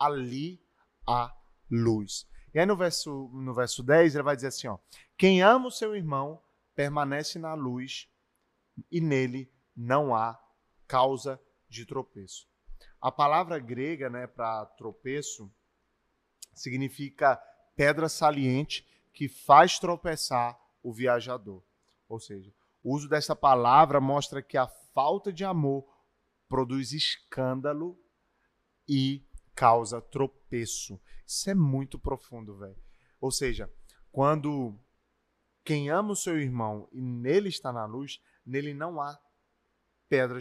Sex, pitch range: male, 120-150 Hz